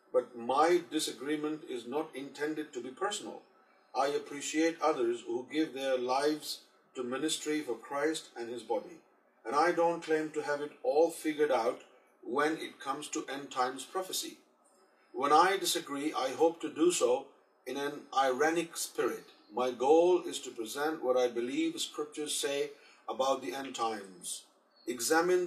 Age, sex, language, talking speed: 50-69, male, Urdu, 160 wpm